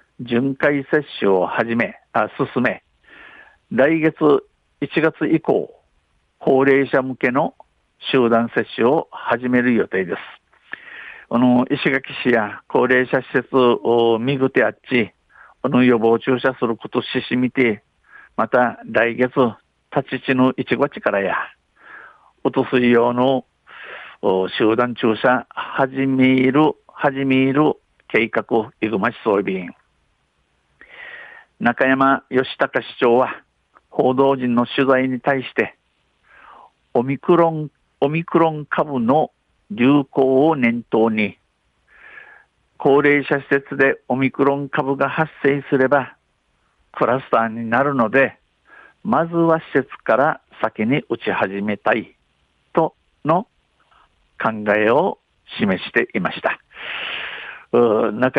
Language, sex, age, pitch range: Japanese, male, 60-79, 115-140 Hz